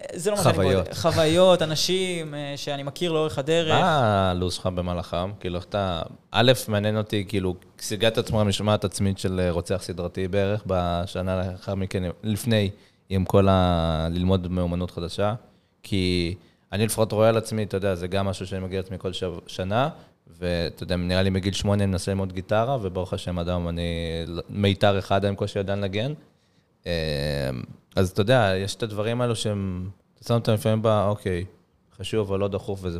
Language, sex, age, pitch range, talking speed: Hebrew, male, 20-39, 90-110 Hz, 165 wpm